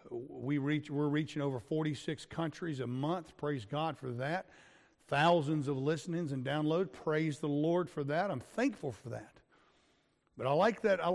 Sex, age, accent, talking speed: male, 50-69, American, 170 wpm